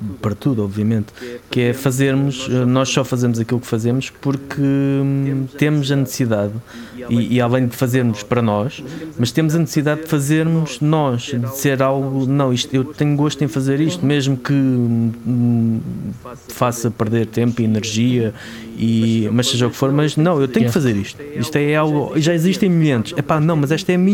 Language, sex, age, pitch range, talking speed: Portuguese, male, 20-39, 120-155 Hz, 185 wpm